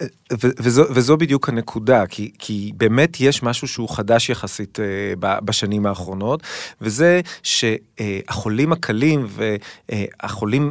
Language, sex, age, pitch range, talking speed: Hebrew, male, 30-49, 115-175 Hz, 125 wpm